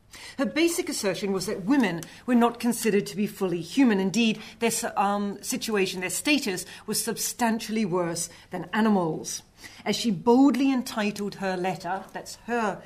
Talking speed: 150 wpm